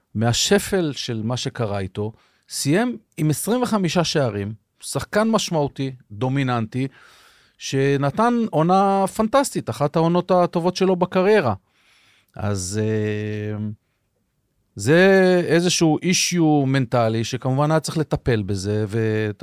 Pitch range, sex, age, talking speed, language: 110-150 Hz, male, 40-59, 95 wpm, Hebrew